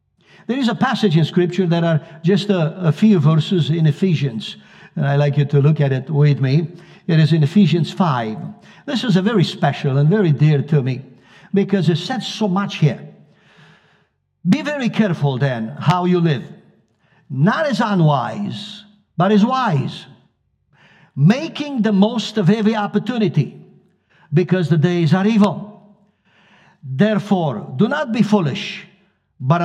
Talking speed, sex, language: 155 wpm, male, English